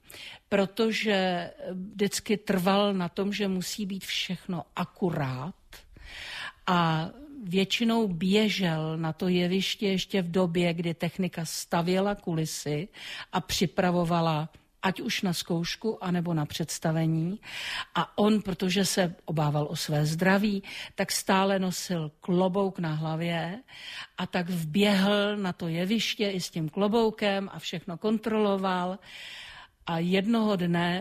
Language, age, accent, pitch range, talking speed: Czech, 50-69, native, 170-205 Hz, 120 wpm